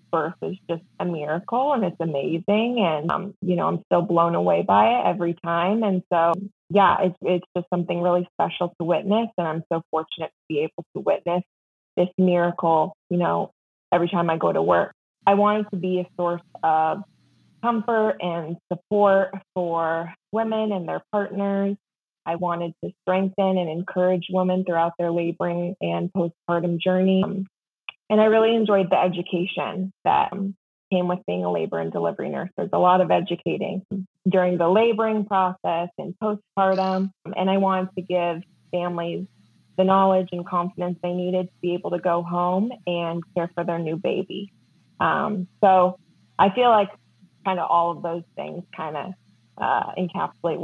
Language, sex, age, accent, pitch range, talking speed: English, female, 20-39, American, 170-195 Hz, 170 wpm